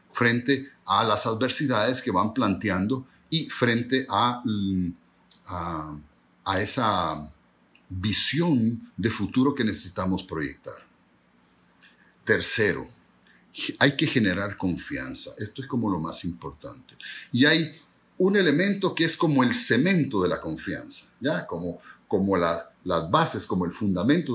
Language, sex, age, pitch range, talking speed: Spanish, male, 50-69, 100-150 Hz, 120 wpm